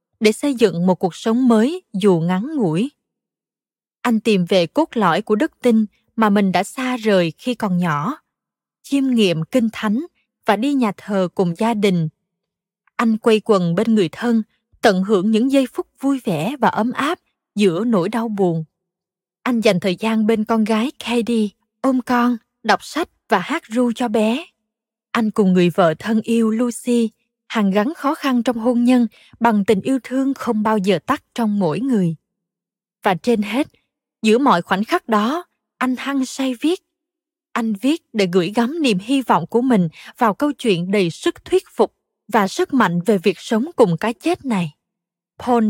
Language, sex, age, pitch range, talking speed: Vietnamese, female, 20-39, 195-250 Hz, 185 wpm